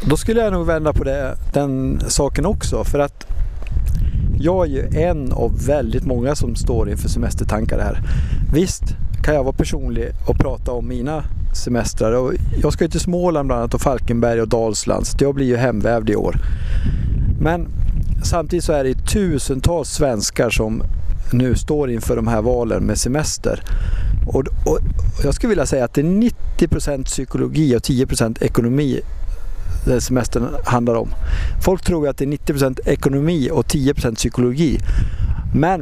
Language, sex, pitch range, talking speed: Swedish, male, 105-140 Hz, 155 wpm